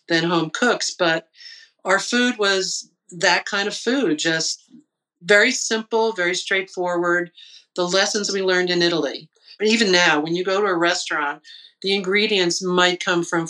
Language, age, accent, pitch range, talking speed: English, 50-69, American, 170-210 Hz, 155 wpm